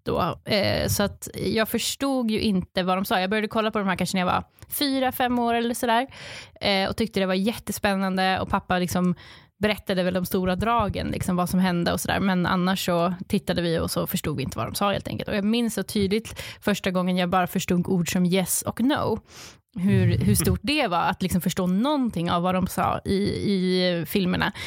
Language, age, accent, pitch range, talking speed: Swedish, 20-39, native, 180-210 Hz, 225 wpm